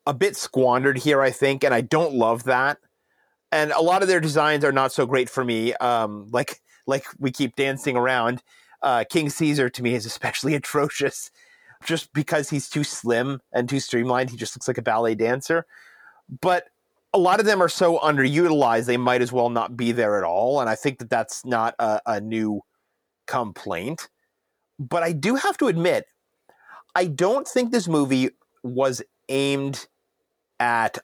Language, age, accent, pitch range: English, 30-49, American, 125-170 Hz